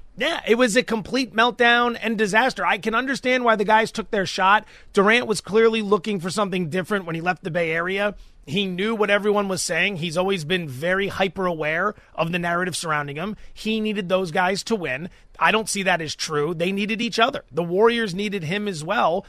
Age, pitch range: 30-49, 175-225 Hz